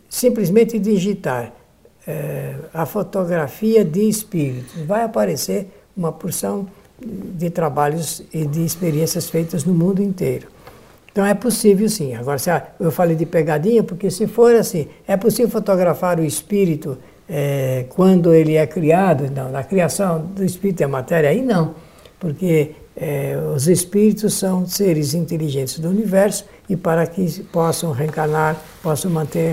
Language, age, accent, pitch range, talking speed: Portuguese, 60-79, Brazilian, 150-190 Hz, 140 wpm